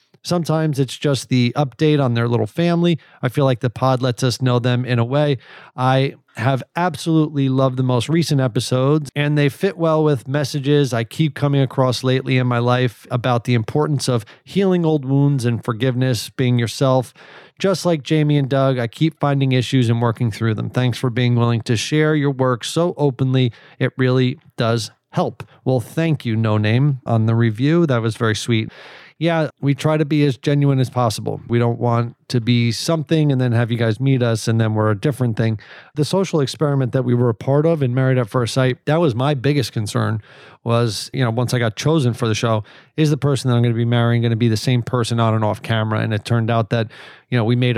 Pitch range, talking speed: 115-140 Hz, 225 wpm